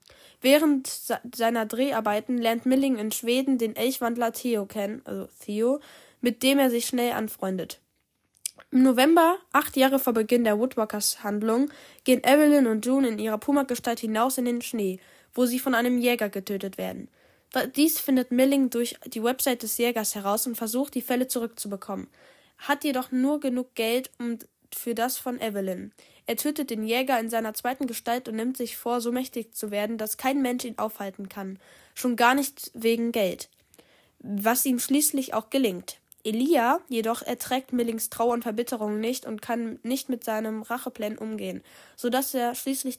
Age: 10-29